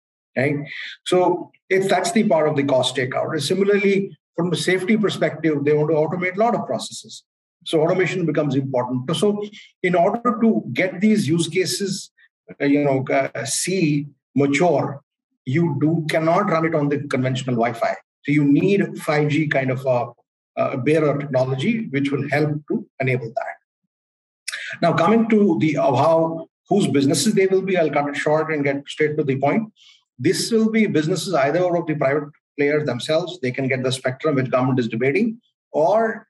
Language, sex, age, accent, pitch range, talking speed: English, male, 50-69, Indian, 135-180 Hz, 175 wpm